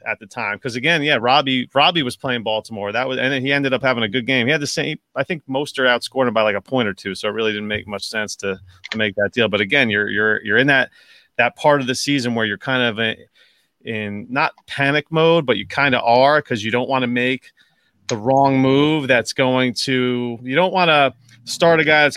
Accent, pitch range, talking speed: American, 115-150 Hz, 260 wpm